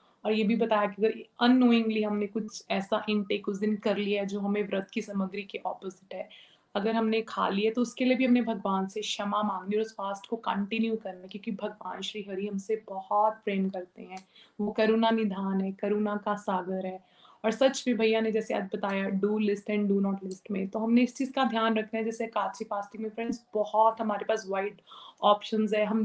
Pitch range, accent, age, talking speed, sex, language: 205-230 Hz, native, 20-39, 215 wpm, female, Hindi